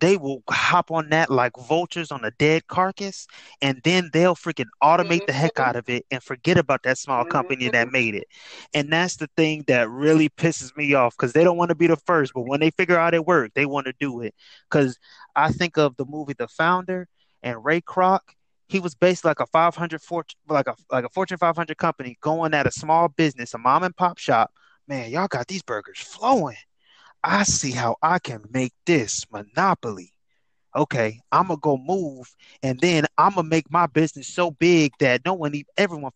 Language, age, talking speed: English, 20-39, 220 wpm